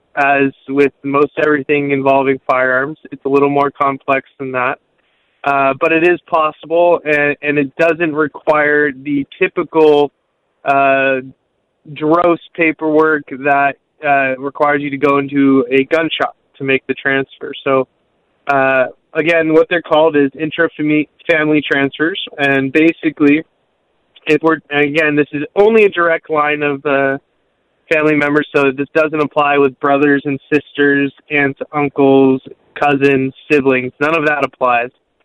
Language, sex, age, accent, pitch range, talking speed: English, male, 20-39, American, 135-155 Hz, 140 wpm